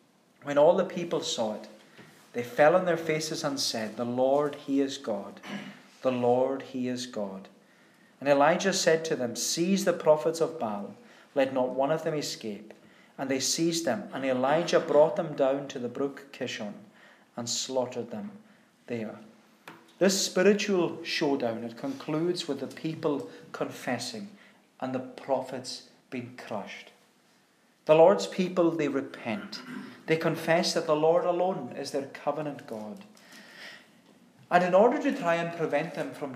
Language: English